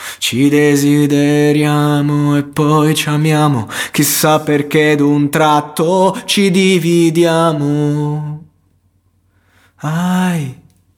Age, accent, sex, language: 20-39, native, male, Italian